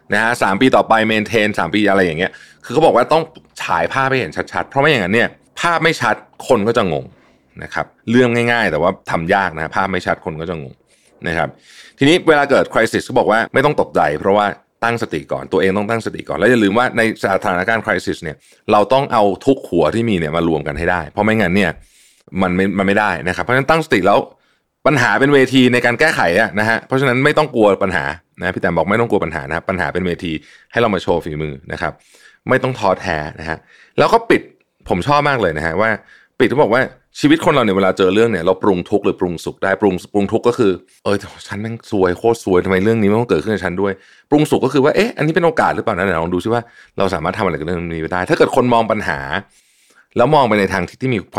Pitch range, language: 90-115 Hz, Thai